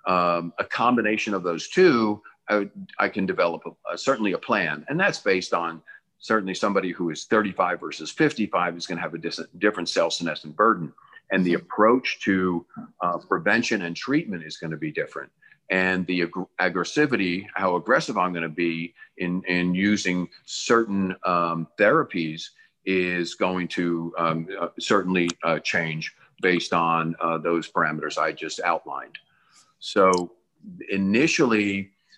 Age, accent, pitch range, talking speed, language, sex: 50-69, American, 85-105 Hz, 145 wpm, English, male